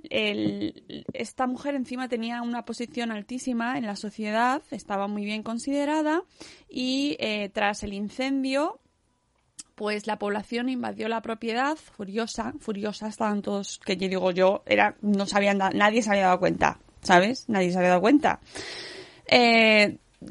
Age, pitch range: 20-39, 210-255 Hz